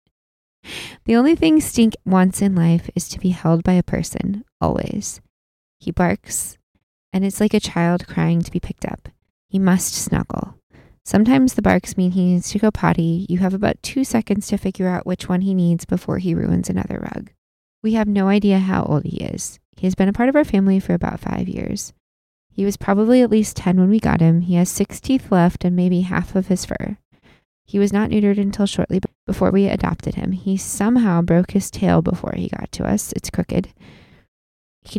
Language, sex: English, female